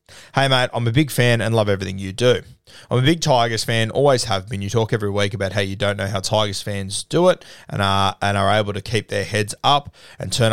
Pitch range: 100-125 Hz